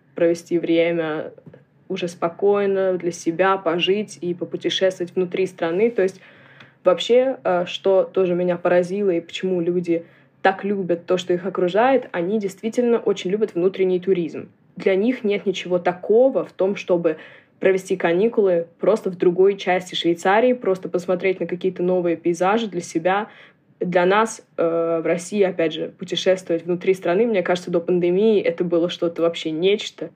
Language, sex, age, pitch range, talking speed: Russian, female, 20-39, 170-195 Hz, 150 wpm